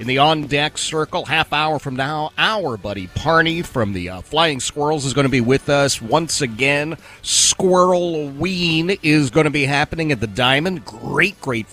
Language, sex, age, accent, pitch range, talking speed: English, male, 40-59, American, 115-160 Hz, 190 wpm